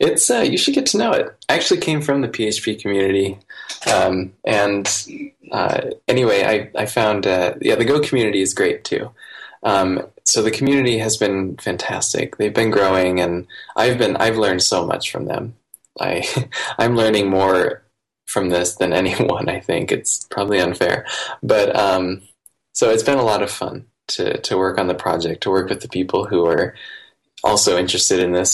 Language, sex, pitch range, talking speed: English, male, 95-125 Hz, 185 wpm